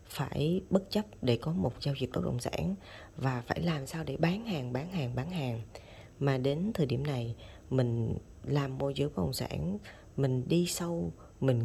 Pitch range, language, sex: 110-155 Hz, Vietnamese, female